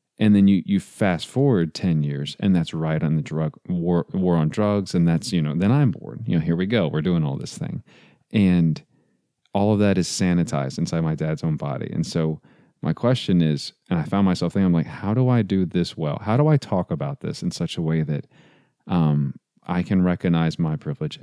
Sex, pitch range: male, 80-105 Hz